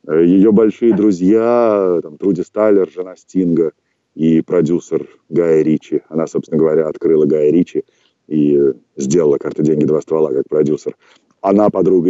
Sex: male